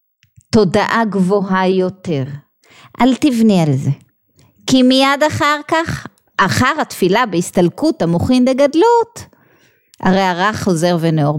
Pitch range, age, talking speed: 205-295 Hz, 30-49, 110 wpm